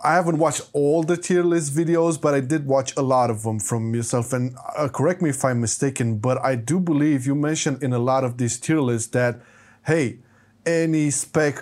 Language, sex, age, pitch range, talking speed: English, male, 20-39, 130-160 Hz, 215 wpm